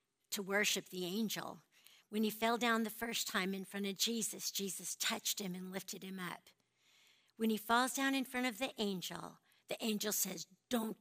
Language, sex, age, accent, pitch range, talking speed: English, female, 60-79, American, 185-225 Hz, 190 wpm